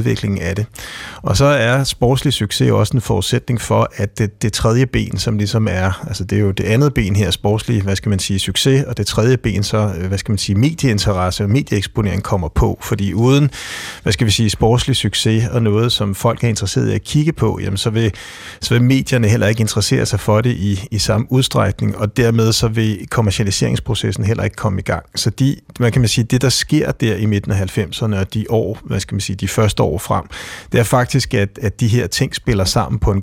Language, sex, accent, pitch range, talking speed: Danish, male, native, 100-120 Hz, 230 wpm